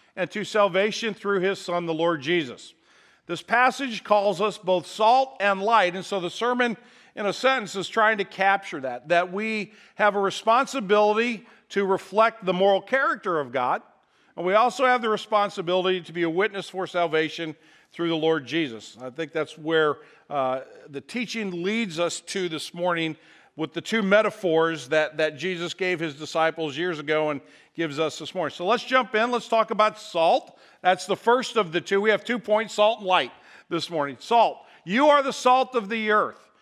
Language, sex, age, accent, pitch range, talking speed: English, male, 50-69, American, 170-225 Hz, 190 wpm